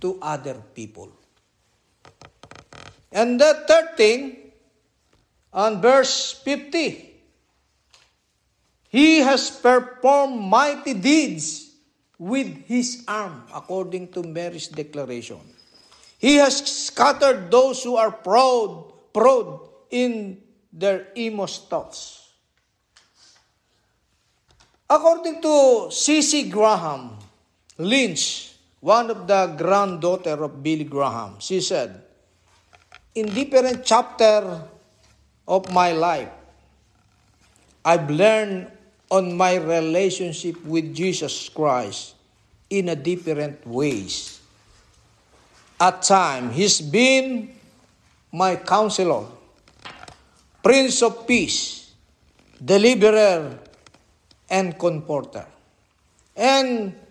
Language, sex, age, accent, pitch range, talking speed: Filipino, male, 50-69, native, 165-255 Hz, 85 wpm